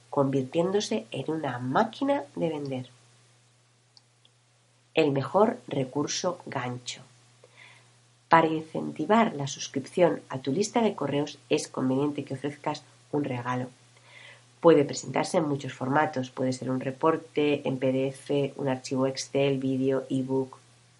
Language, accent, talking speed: Spanish, Spanish, 115 wpm